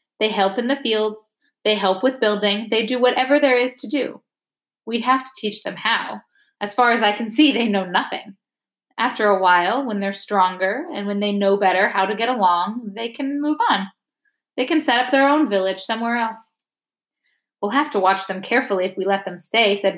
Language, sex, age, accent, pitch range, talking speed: English, female, 10-29, American, 195-265 Hz, 215 wpm